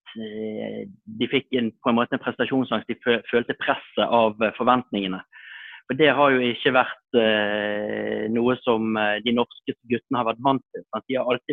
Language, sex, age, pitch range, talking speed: Danish, male, 30-49, 115-135 Hz, 165 wpm